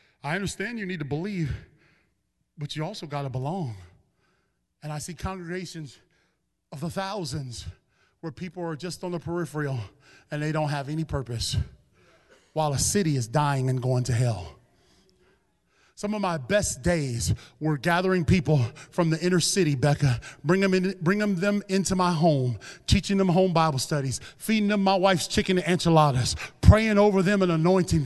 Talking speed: 170 wpm